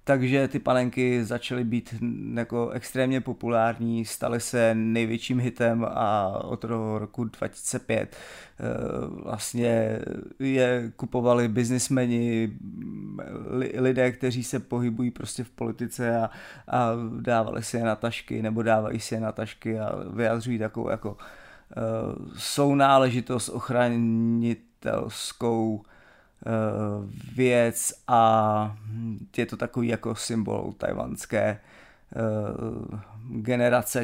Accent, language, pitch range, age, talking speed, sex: native, Czech, 110-120 Hz, 30-49, 95 wpm, male